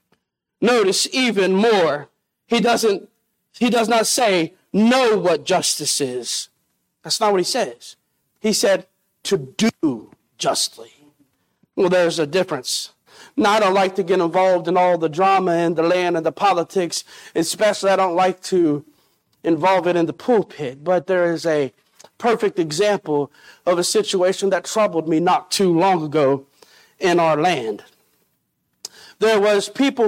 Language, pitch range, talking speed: English, 170-225 Hz, 150 wpm